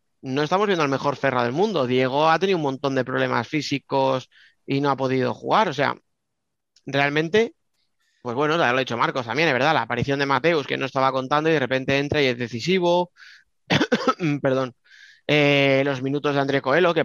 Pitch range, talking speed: 130-150 Hz, 195 wpm